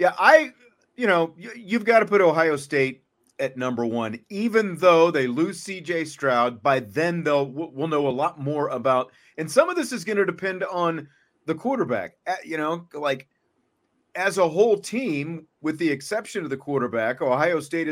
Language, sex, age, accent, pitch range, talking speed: English, male, 40-59, American, 125-170 Hz, 180 wpm